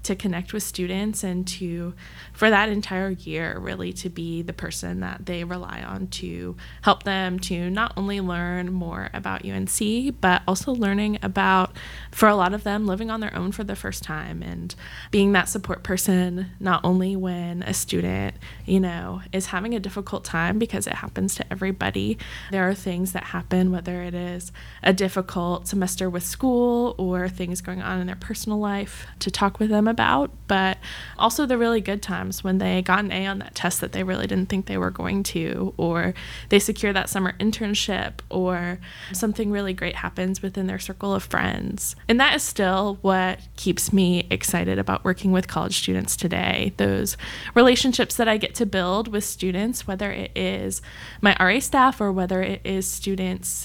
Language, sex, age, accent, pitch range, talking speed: English, female, 20-39, American, 175-200 Hz, 185 wpm